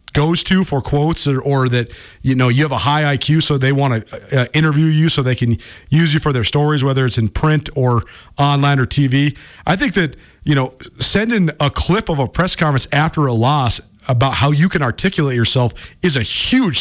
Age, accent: 40-59, American